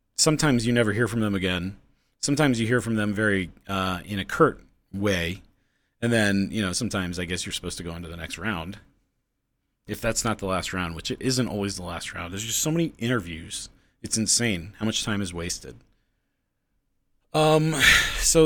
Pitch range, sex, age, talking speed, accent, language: 90-135 Hz, male, 30-49, 195 wpm, American, English